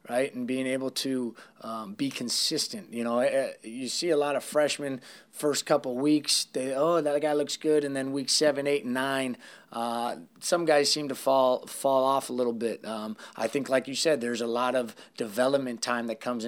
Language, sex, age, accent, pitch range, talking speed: English, male, 20-39, American, 115-135 Hz, 205 wpm